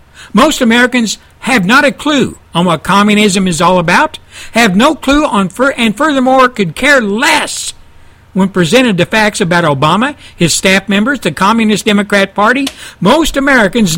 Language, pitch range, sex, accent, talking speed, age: English, 170-245 Hz, male, American, 160 wpm, 60-79